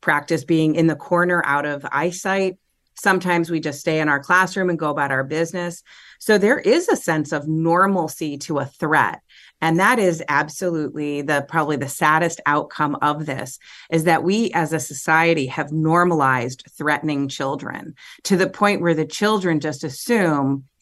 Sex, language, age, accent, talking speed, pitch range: female, English, 30-49, American, 170 wpm, 150-185 Hz